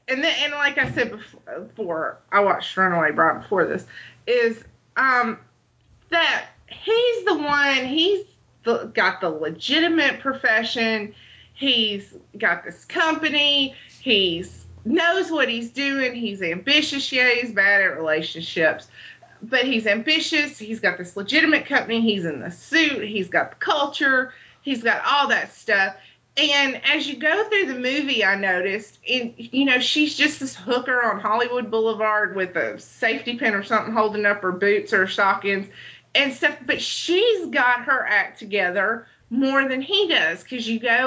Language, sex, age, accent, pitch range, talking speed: English, female, 30-49, American, 210-285 Hz, 160 wpm